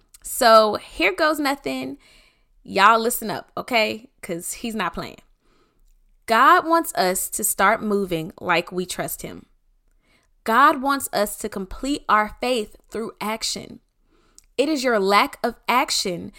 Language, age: English, 20-39